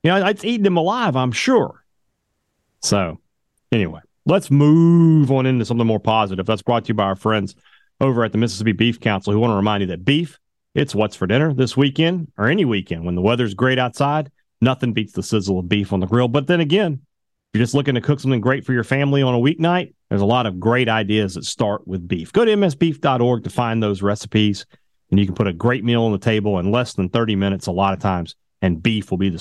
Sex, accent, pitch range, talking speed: male, American, 100-135 Hz, 240 wpm